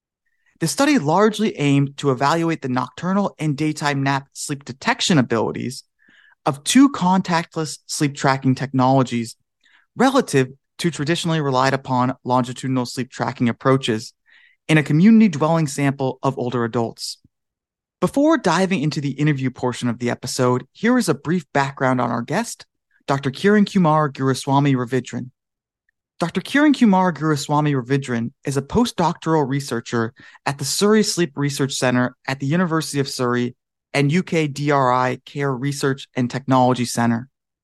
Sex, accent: male, American